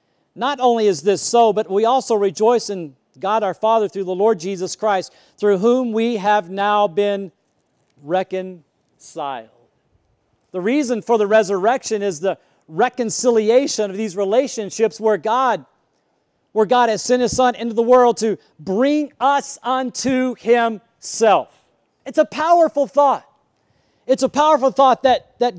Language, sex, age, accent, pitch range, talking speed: English, male, 40-59, American, 205-260 Hz, 145 wpm